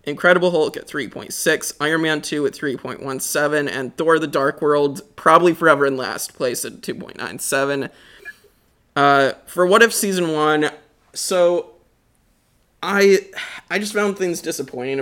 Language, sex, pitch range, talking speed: English, male, 125-155 Hz, 135 wpm